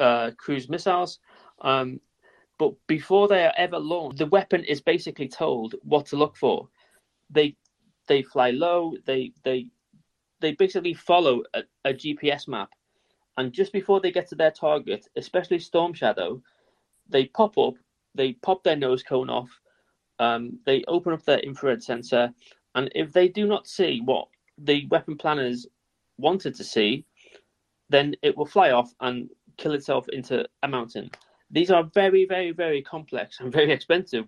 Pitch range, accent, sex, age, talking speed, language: 130-175 Hz, British, male, 30-49, 160 wpm, English